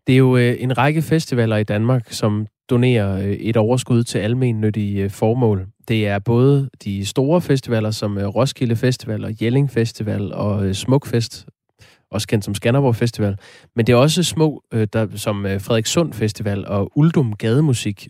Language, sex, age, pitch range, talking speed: Danish, male, 20-39, 105-130 Hz, 150 wpm